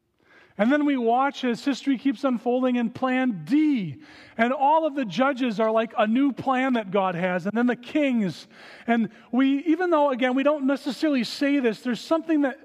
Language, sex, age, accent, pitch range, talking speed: English, male, 40-59, American, 190-275 Hz, 195 wpm